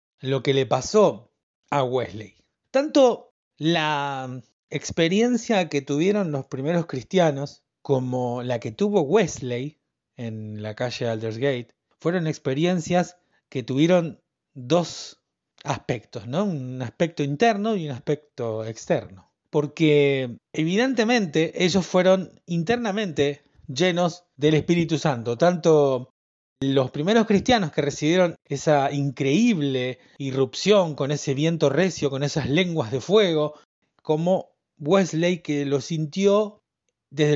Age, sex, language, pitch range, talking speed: 30-49, male, Spanish, 130-175 Hz, 110 wpm